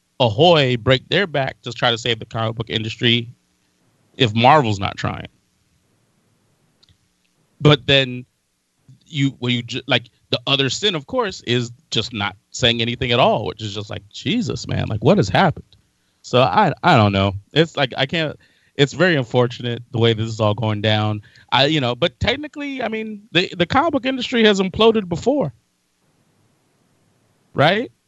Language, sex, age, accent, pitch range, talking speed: English, male, 30-49, American, 115-165 Hz, 170 wpm